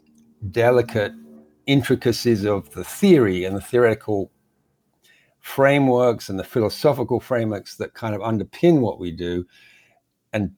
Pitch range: 95-120 Hz